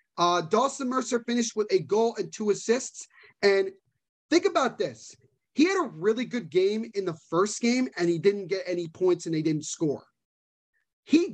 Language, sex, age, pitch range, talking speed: English, male, 30-49, 195-265 Hz, 185 wpm